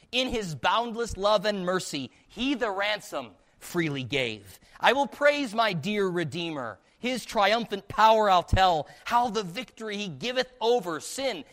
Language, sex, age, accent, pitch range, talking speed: English, male, 40-59, American, 150-210 Hz, 150 wpm